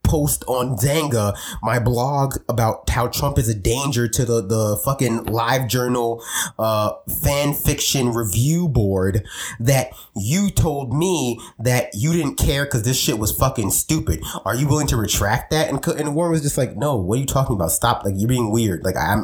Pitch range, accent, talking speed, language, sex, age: 110-140 Hz, American, 190 wpm, English, male, 20-39